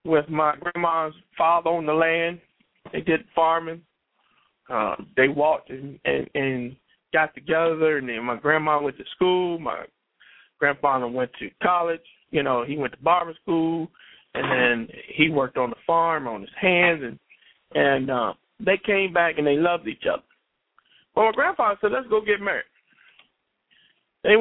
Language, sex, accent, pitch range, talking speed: English, male, American, 155-200 Hz, 165 wpm